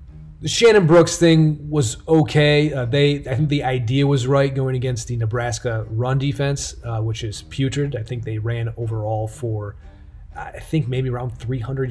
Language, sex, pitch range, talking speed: English, male, 115-145 Hz, 175 wpm